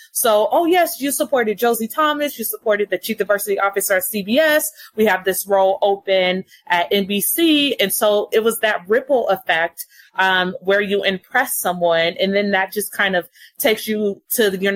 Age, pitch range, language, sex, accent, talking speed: 30-49, 180-215 Hz, English, female, American, 180 wpm